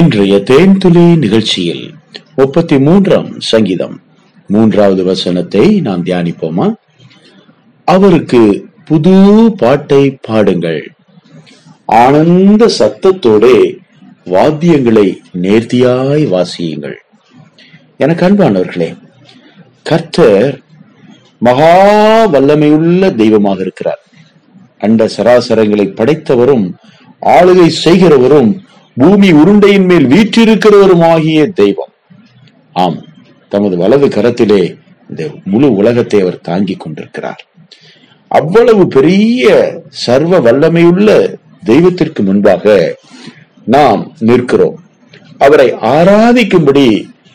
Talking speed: 60 wpm